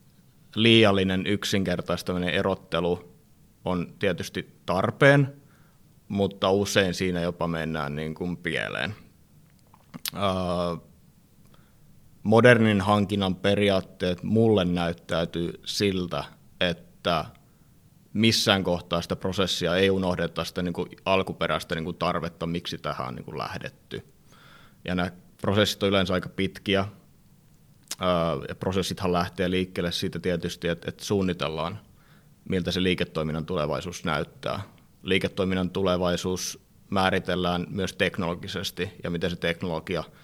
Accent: native